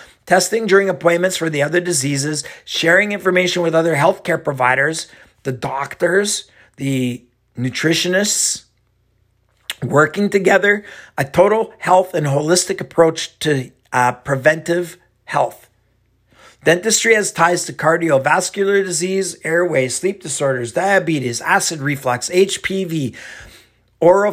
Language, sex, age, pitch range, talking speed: English, male, 50-69, 130-180 Hz, 105 wpm